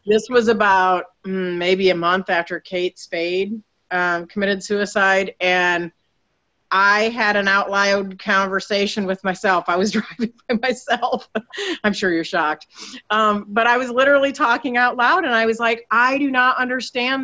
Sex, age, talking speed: female, 40-59, 160 wpm